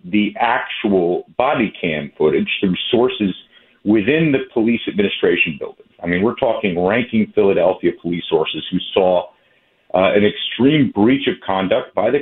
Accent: American